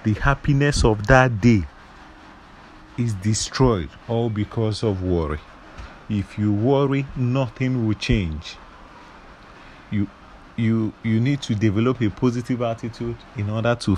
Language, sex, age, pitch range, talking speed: English, male, 40-59, 100-125 Hz, 125 wpm